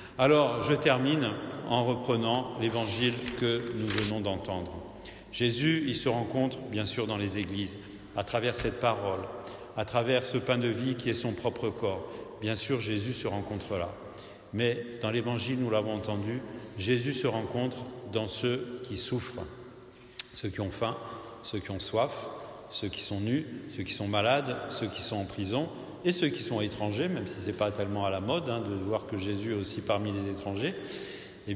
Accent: French